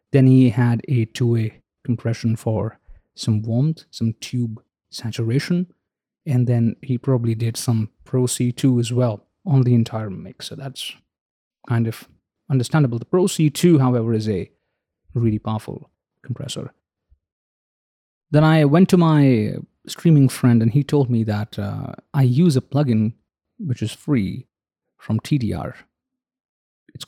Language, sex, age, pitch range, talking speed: English, male, 30-49, 110-135 Hz, 135 wpm